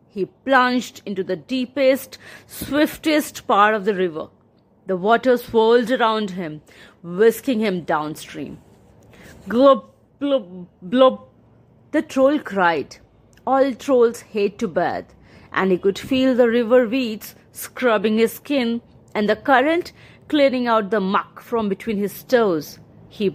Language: English